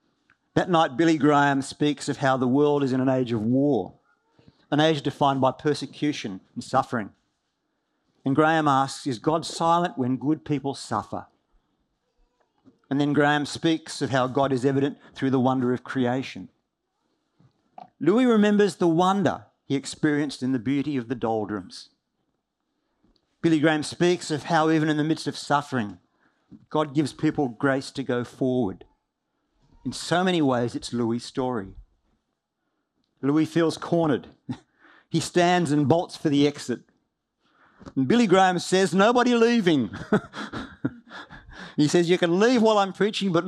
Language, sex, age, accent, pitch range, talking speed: English, male, 50-69, Australian, 130-165 Hz, 150 wpm